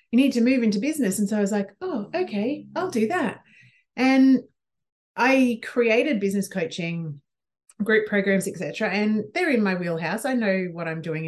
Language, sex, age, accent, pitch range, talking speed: English, female, 30-49, Australian, 170-250 Hz, 180 wpm